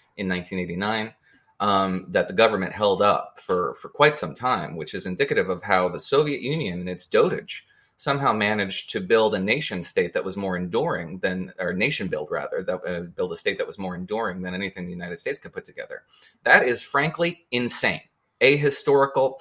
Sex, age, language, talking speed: male, 20-39, English, 195 wpm